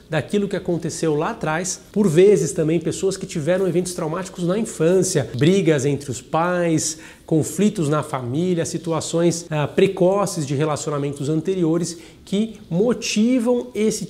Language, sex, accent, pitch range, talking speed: Portuguese, male, Brazilian, 155-190 Hz, 130 wpm